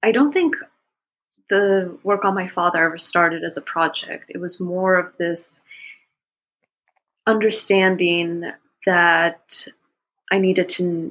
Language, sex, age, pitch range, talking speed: English, female, 30-49, 165-190 Hz, 125 wpm